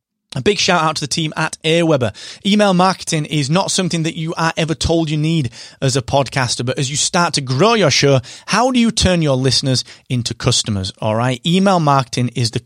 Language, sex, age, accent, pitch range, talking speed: English, male, 30-49, British, 115-155 Hz, 220 wpm